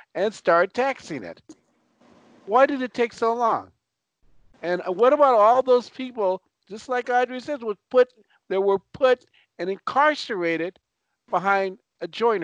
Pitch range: 155-230 Hz